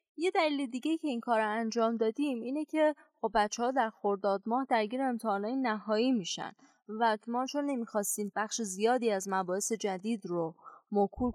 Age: 20-39